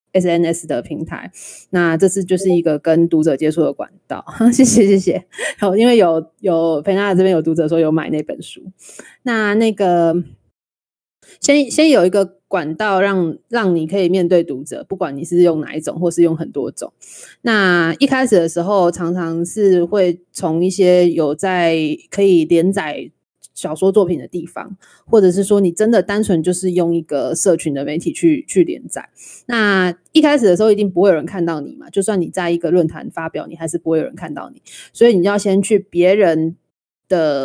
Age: 20-39